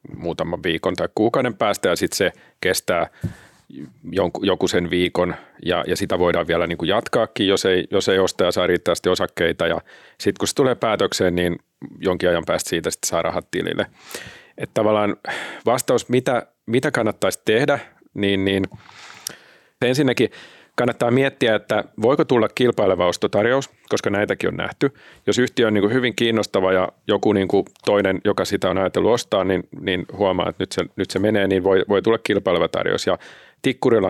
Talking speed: 170 wpm